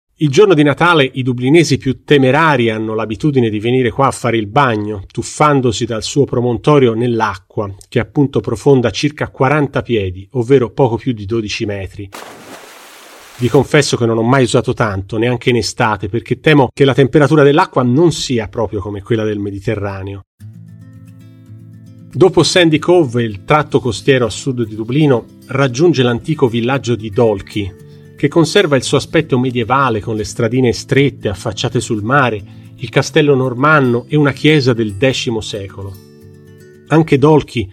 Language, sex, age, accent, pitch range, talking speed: Italian, male, 40-59, native, 110-140 Hz, 155 wpm